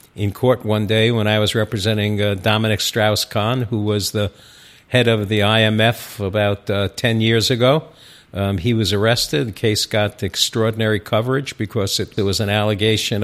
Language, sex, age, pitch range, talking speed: English, male, 60-79, 105-120 Hz, 170 wpm